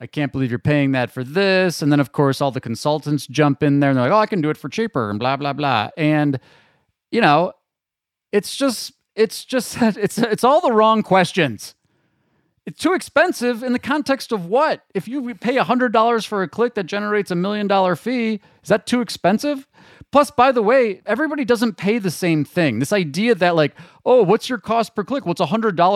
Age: 30-49